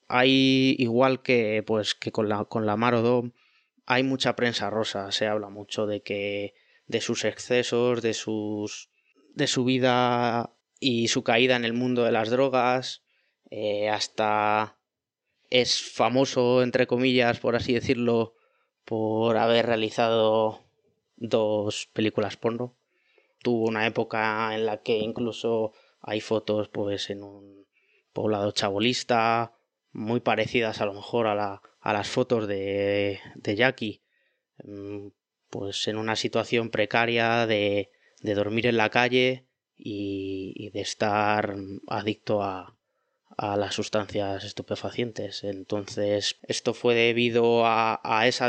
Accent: Spanish